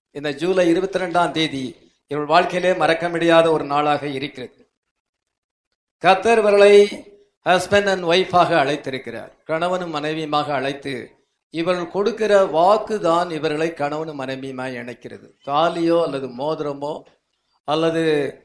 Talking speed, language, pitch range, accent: 100 wpm, English, 145-180 Hz, Indian